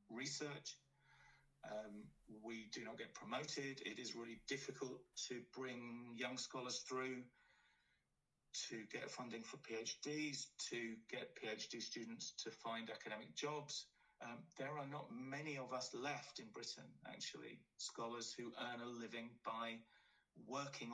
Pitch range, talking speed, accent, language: 115-135 Hz, 135 wpm, British, English